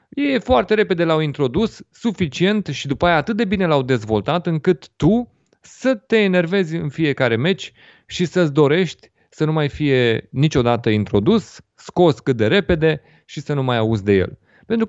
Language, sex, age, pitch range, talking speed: Romanian, male, 30-49, 120-170 Hz, 175 wpm